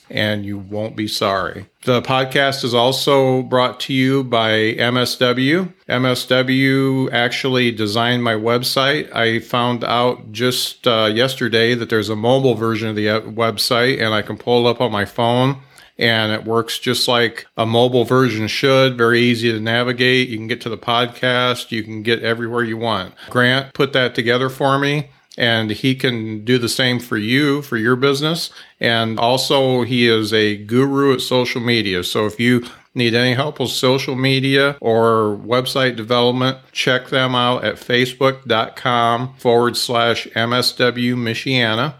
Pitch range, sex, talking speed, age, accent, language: 115-130 Hz, male, 160 wpm, 40-59, American, English